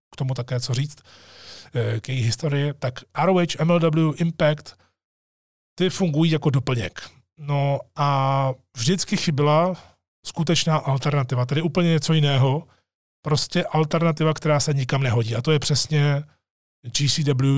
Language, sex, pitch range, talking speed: Czech, male, 120-150 Hz, 125 wpm